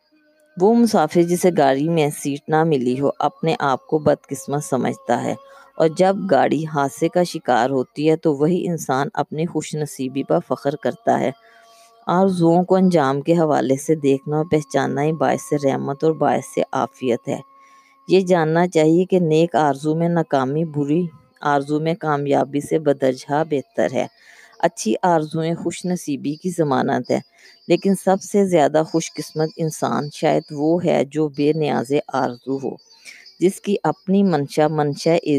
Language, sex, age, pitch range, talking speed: Urdu, female, 20-39, 145-180 Hz, 160 wpm